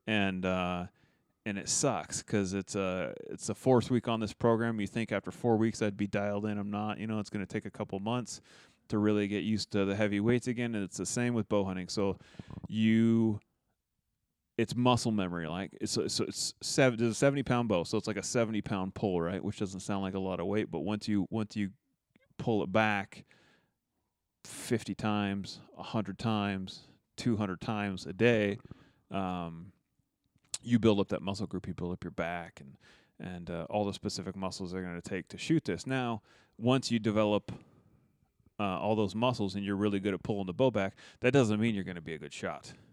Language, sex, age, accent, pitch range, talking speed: English, male, 30-49, American, 95-115 Hz, 210 wpm